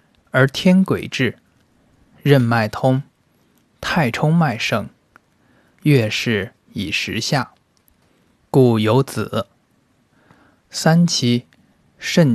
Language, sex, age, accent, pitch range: Chinese, male, 20-39, native, 115-150 Hz